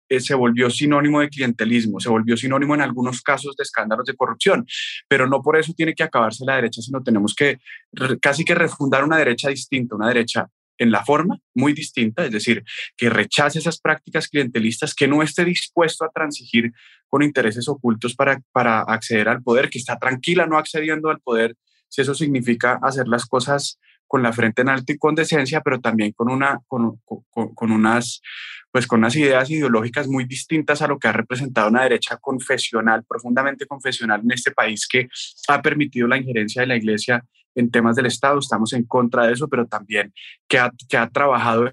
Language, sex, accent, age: English, male, Colombian, 20-39